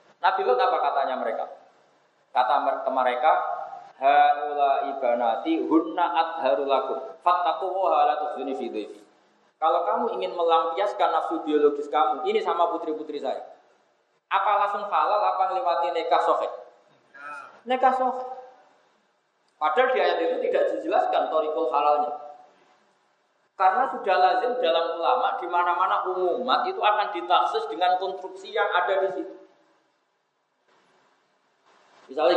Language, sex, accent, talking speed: Indonesian, male, native, 115 wpm